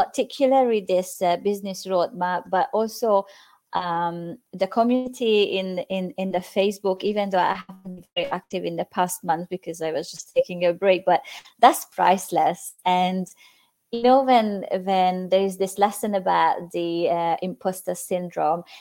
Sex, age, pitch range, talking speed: female, 20-39, 180-225 Hz, 160 wpm